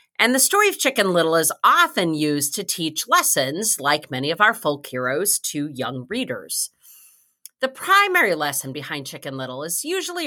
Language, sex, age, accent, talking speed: English, female, 40-59, American, 170 wpm